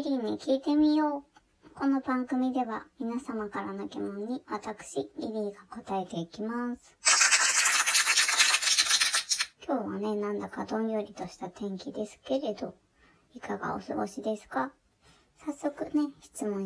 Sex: male